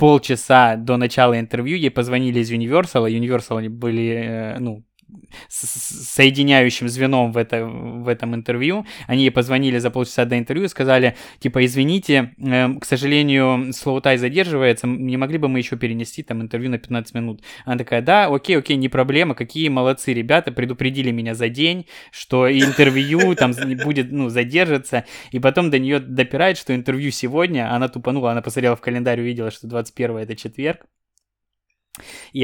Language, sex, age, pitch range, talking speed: Russian, male, 20-39, 120-135 Hz, 160 wpm